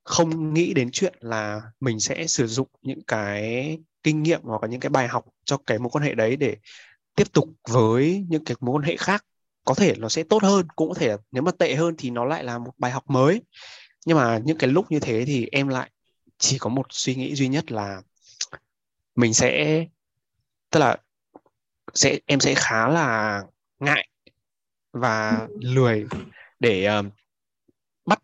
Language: Vietnamese